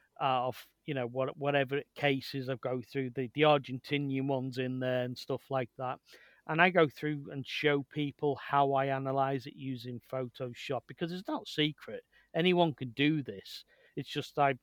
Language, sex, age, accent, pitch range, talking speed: English, male, 40-59, British, 130-145 Hz, 175 wpm